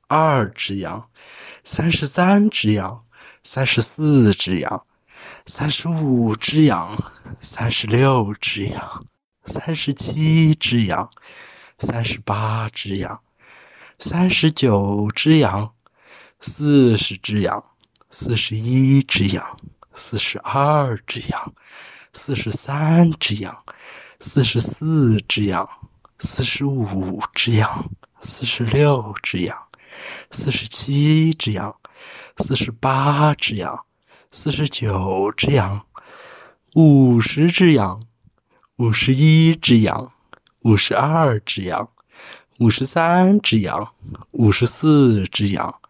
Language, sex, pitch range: Chinese, male, 105-145 Hz